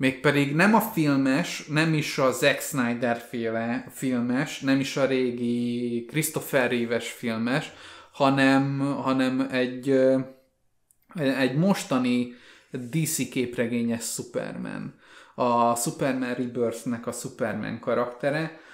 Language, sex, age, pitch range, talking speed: Hungarian, male, 20-39, 120-145 Hz, 100 wpm